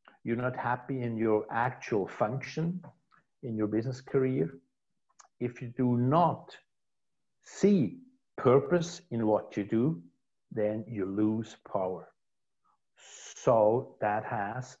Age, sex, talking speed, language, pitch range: 60-79, male, 115 wpm, English, 105-130 Hz